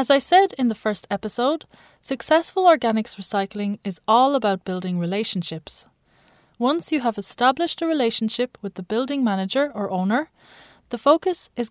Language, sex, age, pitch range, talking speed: English, female, 20-39, 195-270 Hz, 155 wpm